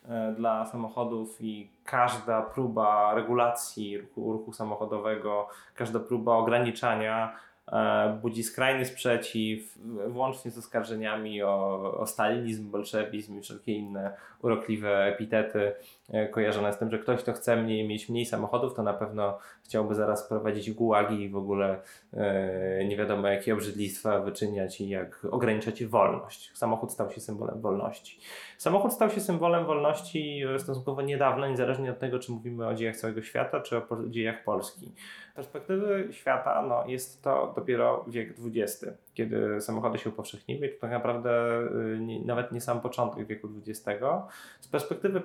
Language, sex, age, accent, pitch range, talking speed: Polish, male, 20-39, native, 105-120 Hz, 140 wpm